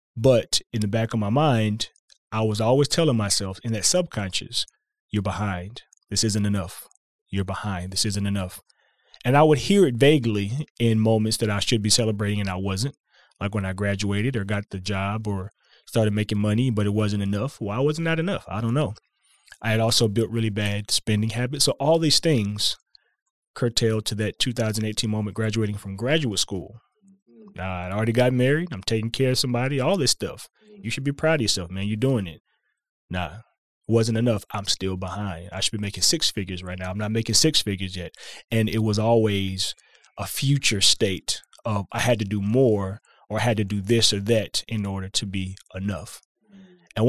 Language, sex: English, male